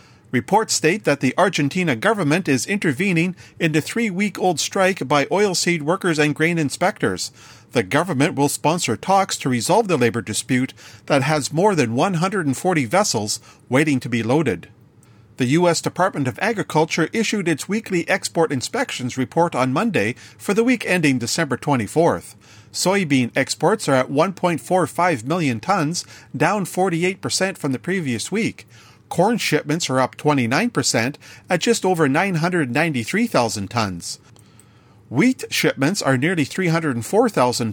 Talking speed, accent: 135 wpm, American